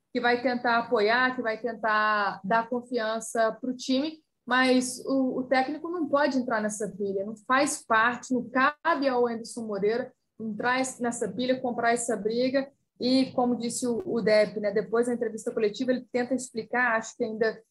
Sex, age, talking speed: female, 20-39, 175 wpm